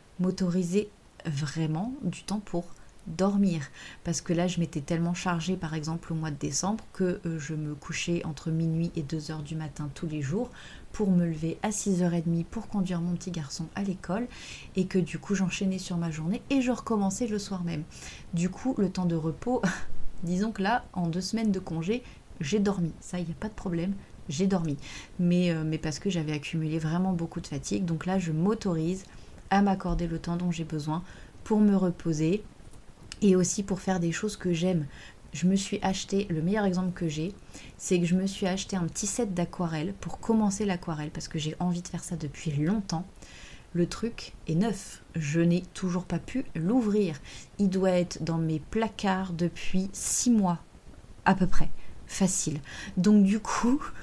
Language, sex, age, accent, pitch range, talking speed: French, female, 30-49, French, 165-195 Hz, 190 wpm